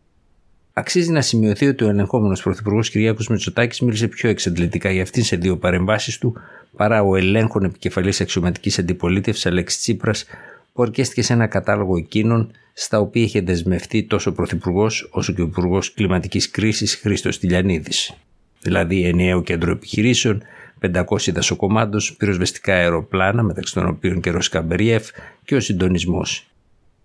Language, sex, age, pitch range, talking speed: Greek, male, 60-79, 90-110 Hz, 140 wpm